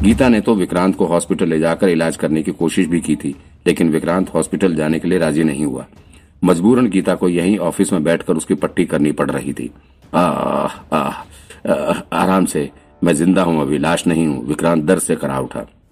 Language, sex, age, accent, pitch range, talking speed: Hindi, male, 50-69, native, 75-95 Hz, 185 wpm